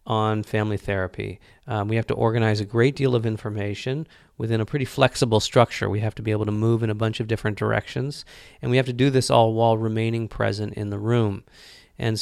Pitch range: 105-120 Hz